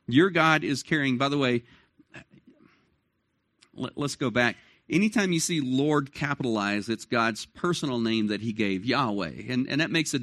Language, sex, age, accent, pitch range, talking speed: English, male, 50-69, American, 120-160 Hz, 165 wpm